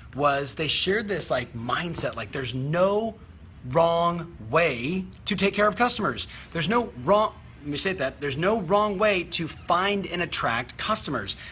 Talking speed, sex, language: 165 wpm, male, English